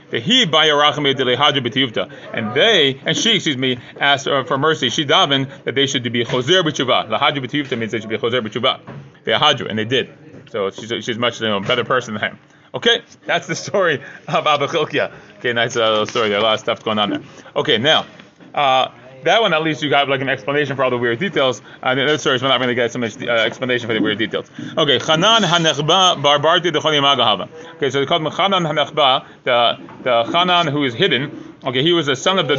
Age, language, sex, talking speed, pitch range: 30-49, English, male, 210 wpm, 135-175 Hz